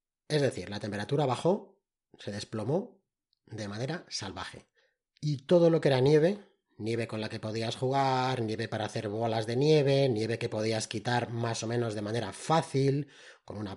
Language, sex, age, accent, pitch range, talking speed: Spanish, male, 30-49, Spanish, 105-145 Hz, 175 wpm